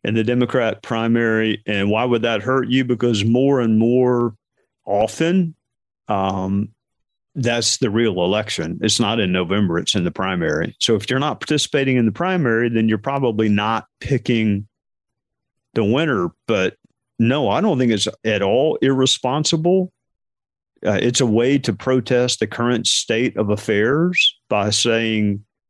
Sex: male